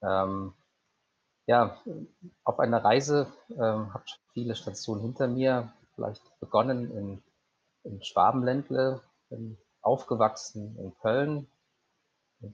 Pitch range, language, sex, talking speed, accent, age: 105-125 Hz, German, male, 100 wpm, German, 30-49